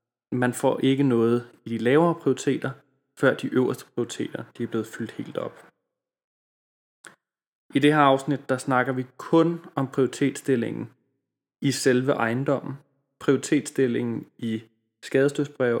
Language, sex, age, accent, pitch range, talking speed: Danish, male, 20-39, native, 115-145 Hz, 125 wpm